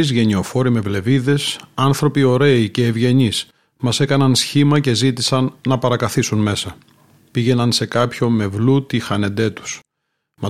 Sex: male